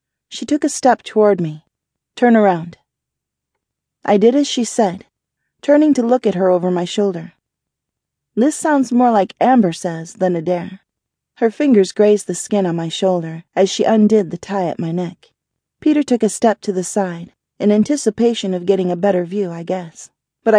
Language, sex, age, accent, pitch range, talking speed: English, female, 30-49, American, 180-220 Hz, 180 wpm